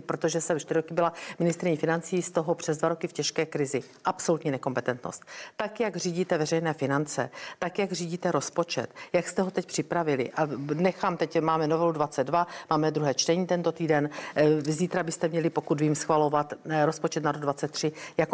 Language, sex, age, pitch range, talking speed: Czech, female, 50-69, 160-200 Hz, 175 wpm